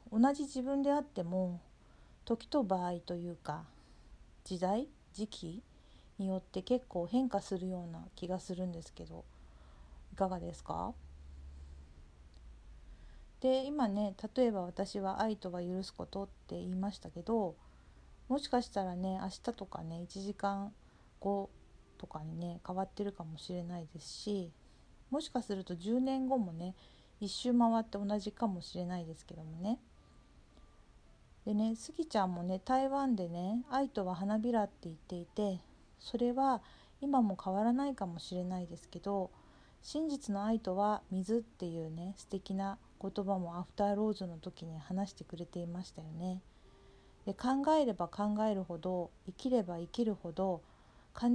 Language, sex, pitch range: Japanese, female, 175-225 Hz